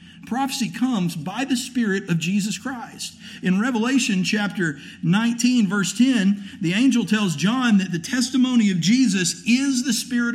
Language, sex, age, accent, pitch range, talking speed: English, male, 50-69, American, 180-230 Hz, 150 wpm